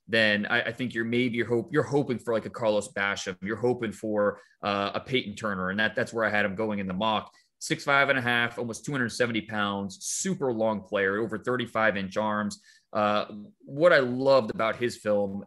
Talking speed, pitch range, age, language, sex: 205 wpm, 105-120 Hz, 30-49, English, male